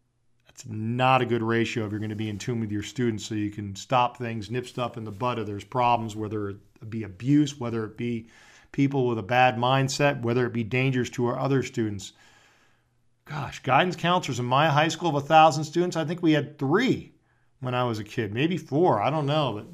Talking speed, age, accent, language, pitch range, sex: 225 wpm, 40-59, American, English, 120-155 Hz, male